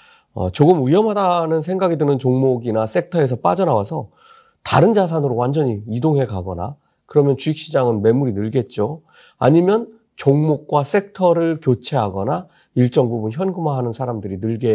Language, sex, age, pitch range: Korean, male, 40-59, 115-180 Hz